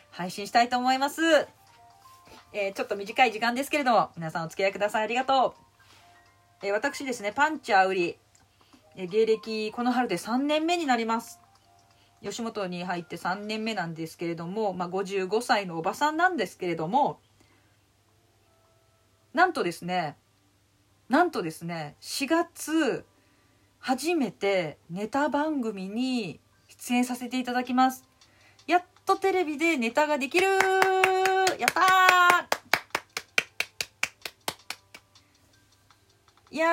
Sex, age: female, 40-59